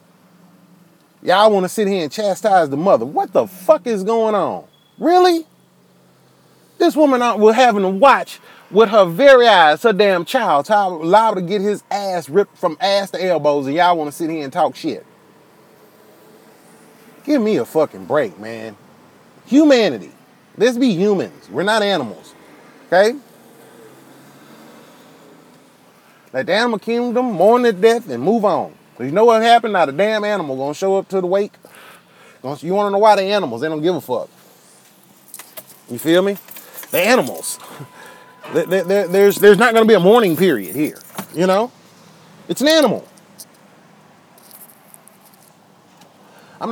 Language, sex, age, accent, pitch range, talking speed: English, male, 30-49, American, 175-230 Hz, 155 wpm